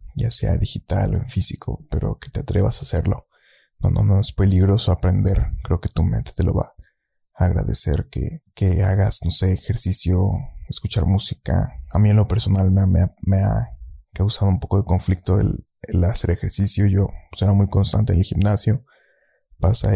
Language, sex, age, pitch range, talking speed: Spanish, male, 20-39, 90-105 Hz, 185 wpm